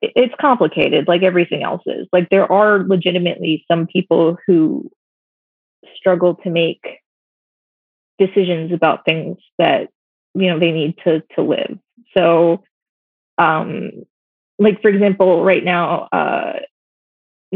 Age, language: 20-39, English